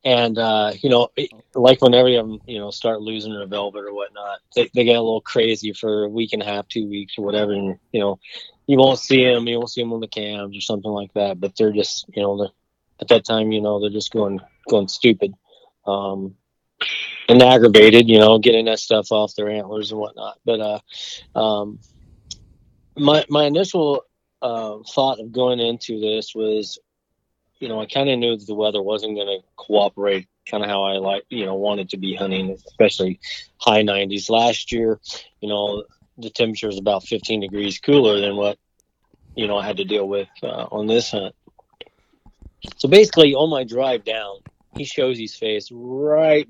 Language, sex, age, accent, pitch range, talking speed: English, male, 20-39, American, 100-120 Hz, 195 wpm